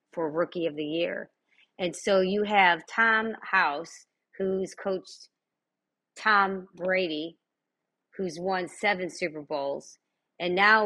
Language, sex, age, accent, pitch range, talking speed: English, female, 30-49, American, 170-200 Hz, 120 wpm